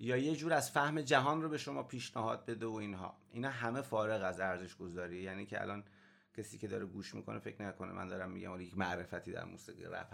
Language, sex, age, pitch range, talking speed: Persian, male, 30-49, 105-145 Hz, 225 wpm